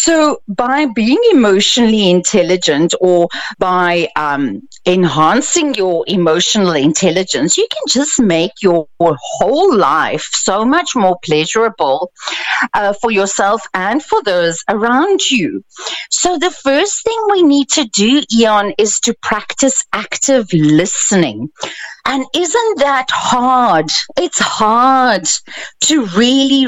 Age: 40-59